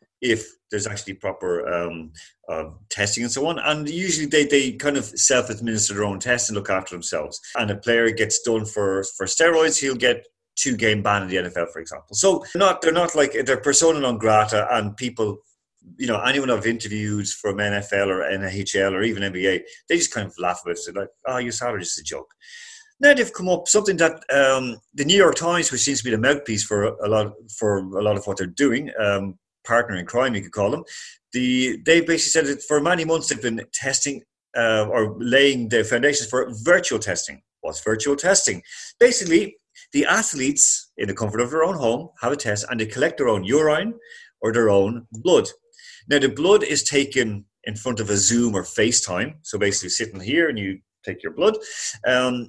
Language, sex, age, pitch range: English, male, 30-49, 105-160 Hz